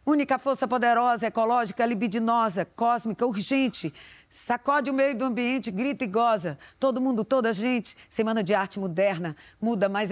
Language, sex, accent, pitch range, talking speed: Portuguese, female, Brazilian, 190-265 Hz, 150 wpm